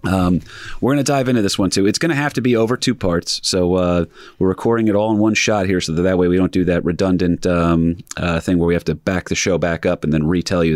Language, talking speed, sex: English, 295 wpm, male